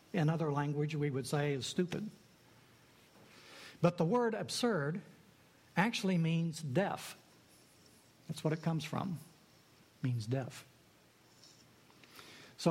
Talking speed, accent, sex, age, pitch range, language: 115 wpm, American, male, 60-79, 150-185 Hz, English